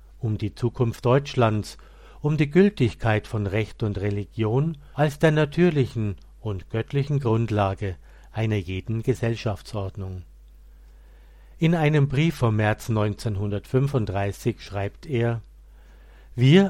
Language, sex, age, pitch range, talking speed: German, male, 50-69, 100-135 Hz, 105 wpm